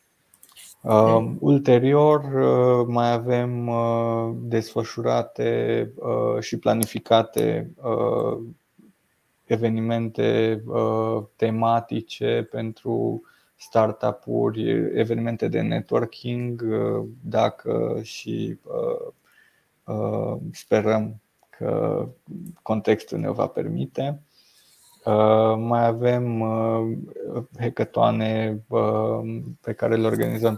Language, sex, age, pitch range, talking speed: Romanian, male, 20-39, 110-120 Hz, 55 wpm